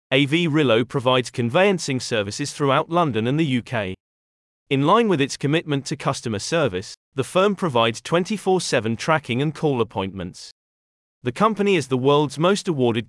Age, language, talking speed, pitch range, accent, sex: 40-59, English, 150 wpm, 115-160 Hz, British, male